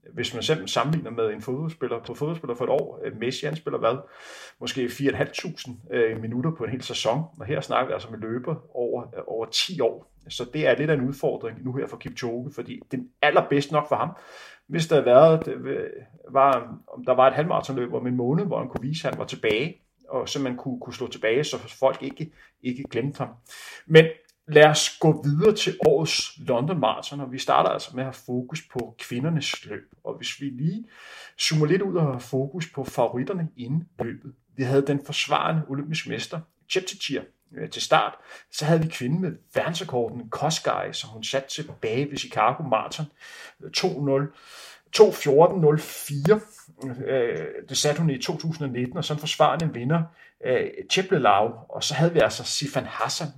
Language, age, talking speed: Danish, 30-49, 180 wpm